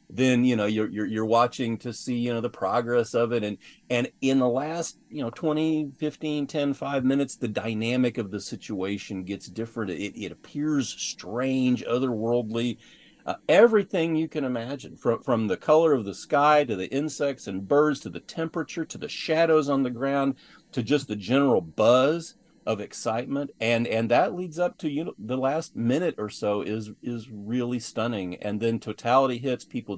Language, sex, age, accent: English, male, 40-59, American